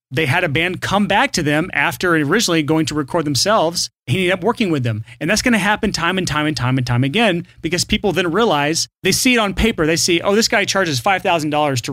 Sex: male